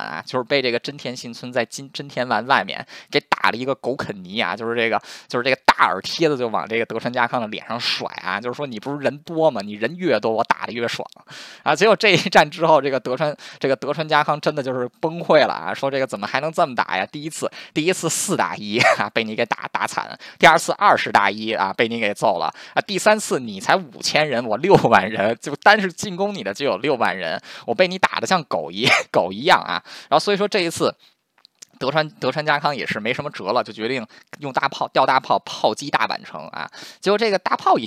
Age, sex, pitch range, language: 20-39, male, 115-160 Hz, Chinese